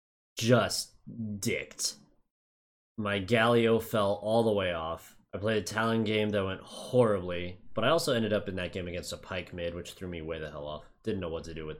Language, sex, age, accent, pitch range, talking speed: English, male, 20-39, American, 95-120 Hz, 215 wpm